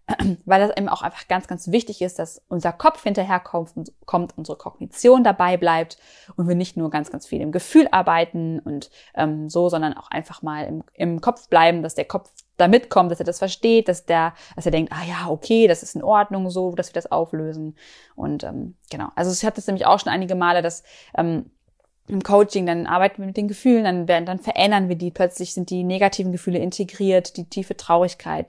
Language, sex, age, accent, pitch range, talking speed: German, female, 20-39, German, 170-205 Hz, 215 wpm